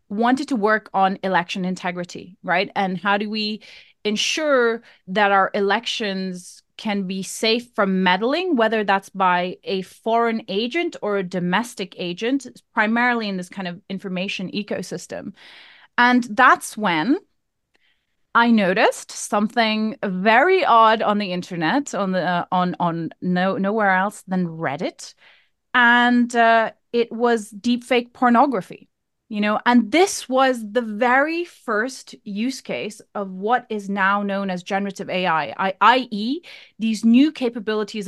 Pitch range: 195-240 Hz